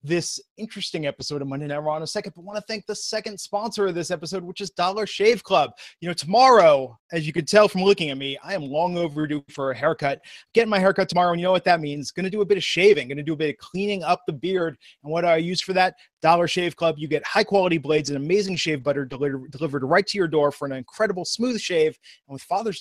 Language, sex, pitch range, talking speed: English, male, 155-200 Hz, 275 wpm